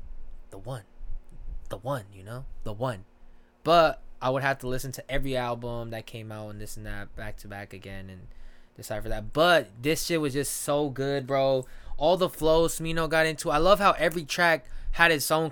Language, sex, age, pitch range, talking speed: English, male, 20-39, 115-155 Hz, 210 wpm